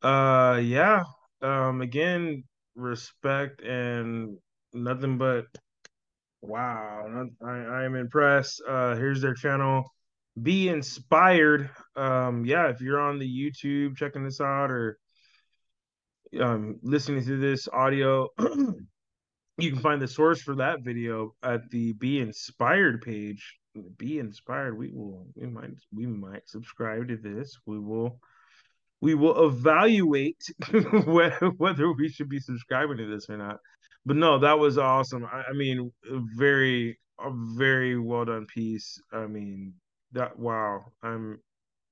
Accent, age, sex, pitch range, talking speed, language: American, 20-39, male, 115-150 Hz, 130 wpm, English